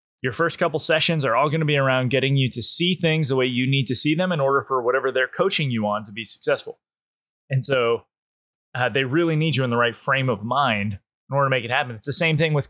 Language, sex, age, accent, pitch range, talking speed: English, male, 20-39, American, 120-150 Hz, 270 wpm